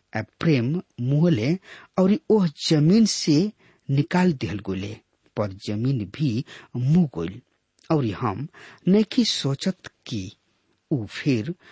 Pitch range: 105-155 Hz